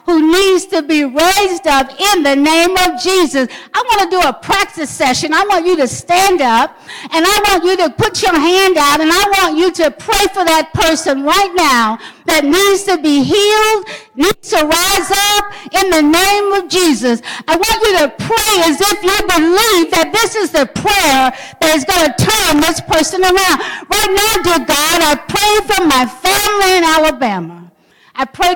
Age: 50-69